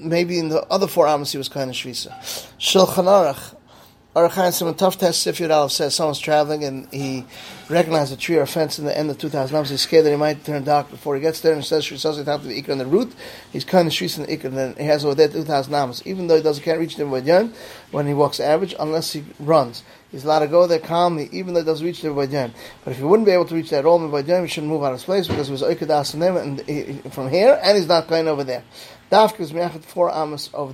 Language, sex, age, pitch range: English, male, 30-49, 140-165 Hz